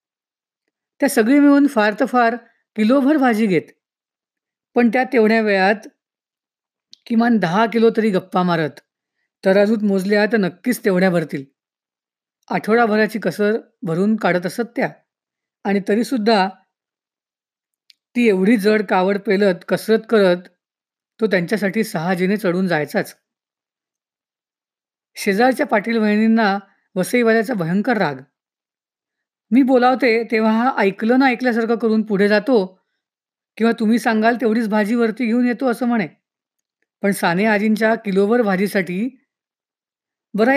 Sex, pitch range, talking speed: female, 195-235 Hz, 115 wpm